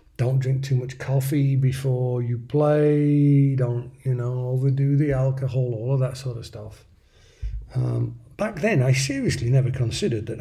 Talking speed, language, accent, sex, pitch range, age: 160 wpm, English, British, male, 115-145 Hz, 50-69